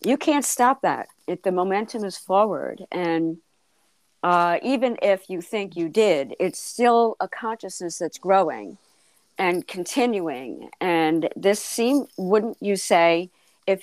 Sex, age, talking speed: female, 50-69, 140 wpm